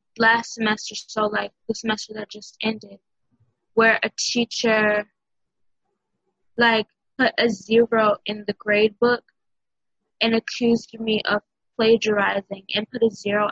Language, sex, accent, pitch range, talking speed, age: English, female, American, 210-230 Hz, 130 wpm, 10-29